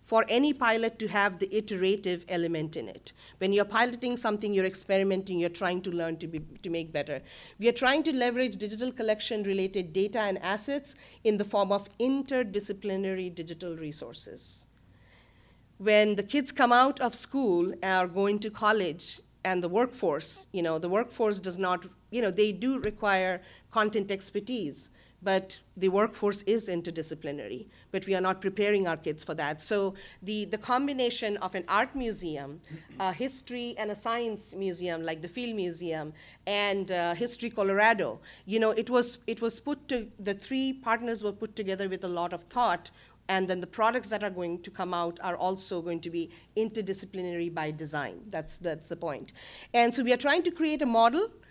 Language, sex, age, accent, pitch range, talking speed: English, female, 50-69, Indian, 180-230 Hz, 185 wpm